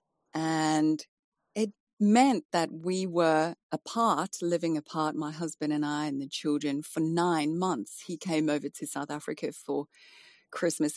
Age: 30-49